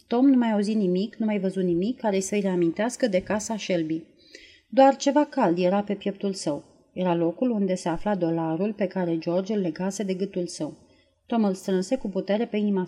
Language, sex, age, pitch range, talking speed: Romanian, female, 30-49, 170-230 Hz, 205 wpm